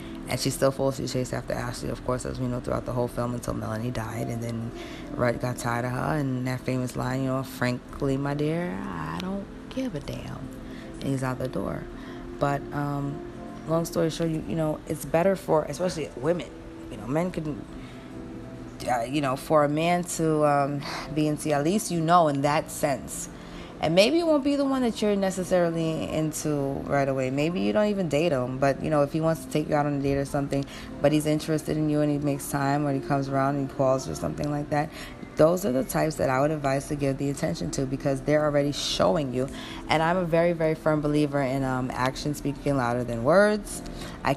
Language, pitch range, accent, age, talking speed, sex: English, 130-155 Hz, American, 20-39, 225 wpm, female